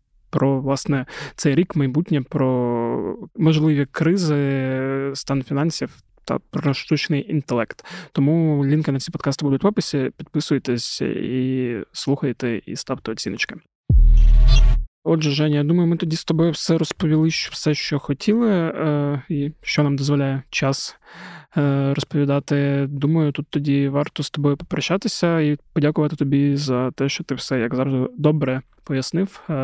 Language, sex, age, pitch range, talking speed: Ukrainian, male, 20-39, 135-155 Hz, 135 wpm